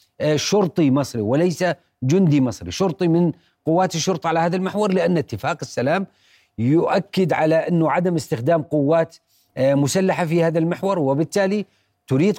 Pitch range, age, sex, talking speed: 155-185 Hz, 40-59, male, 130 wpm